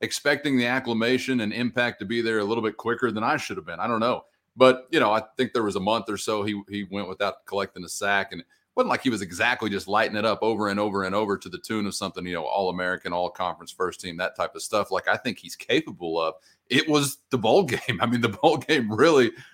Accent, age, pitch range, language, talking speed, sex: American, 30-49, 100-130 Hz, English, 270 wpm, male